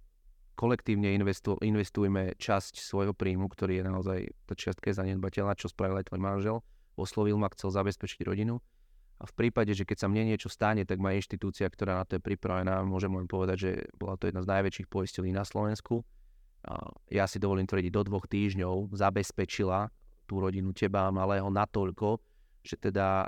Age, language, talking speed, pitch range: 30-49, Slovak, 170 wpm, 95-100 Hz